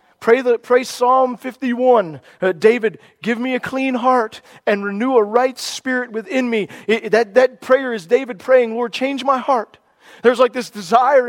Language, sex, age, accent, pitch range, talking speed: English, male, 40-59, American, 230-285 Hz, 185 wpm